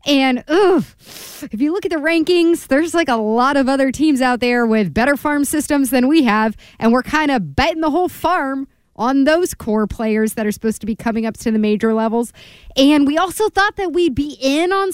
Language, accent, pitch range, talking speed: English, American, 225-300 Hz, 225 wpm